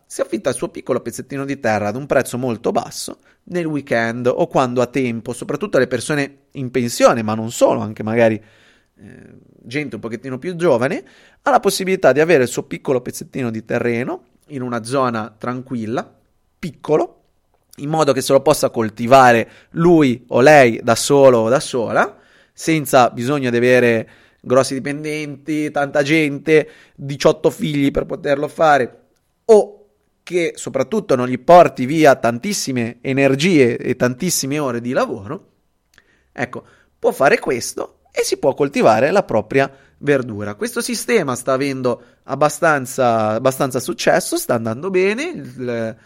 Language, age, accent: Italian, 30-49, native